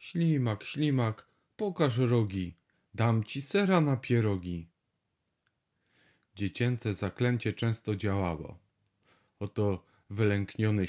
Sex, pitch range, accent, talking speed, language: male, 100-125 Hz, native, 85 wpm, Polish